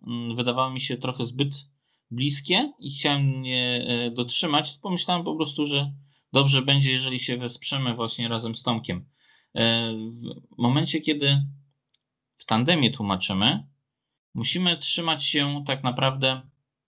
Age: 20-39